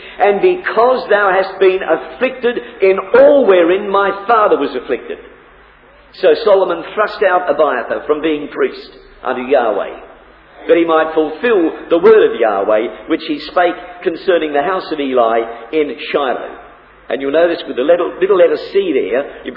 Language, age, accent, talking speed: English, 50-69, British, 160 wpm